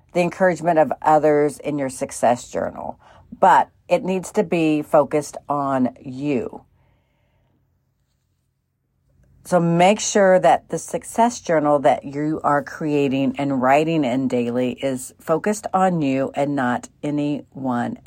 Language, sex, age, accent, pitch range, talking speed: English, female, 50-69, American, 145-180 Hz, 125 wpm